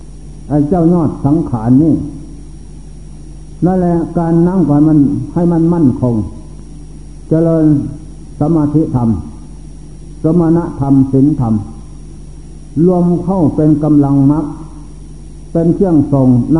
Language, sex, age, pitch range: Thai, male, 60-79, 135-165 Hz